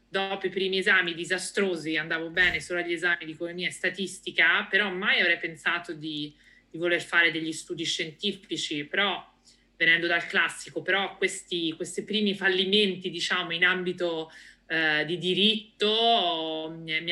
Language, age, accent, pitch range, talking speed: Italian, 30-49, native, 165-185 Hz, 145 wpm